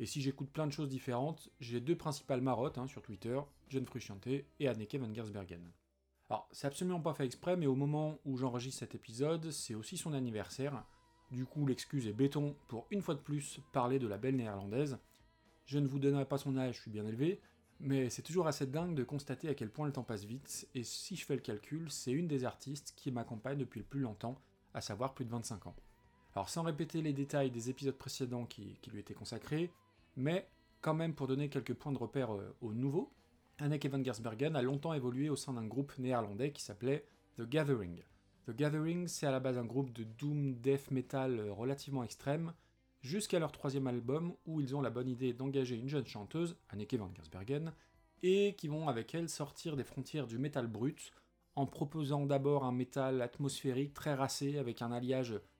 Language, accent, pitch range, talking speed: French, French, 120-145 Hz, 205 wpm